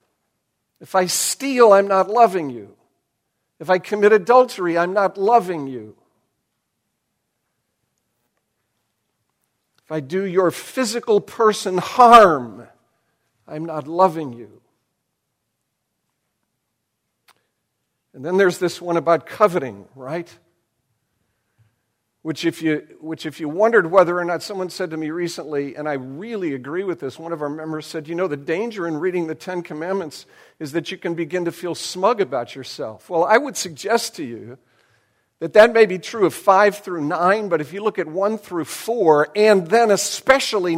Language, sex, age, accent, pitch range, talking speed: English, male, 60-79, American, 155-195 Hz, 155 wpm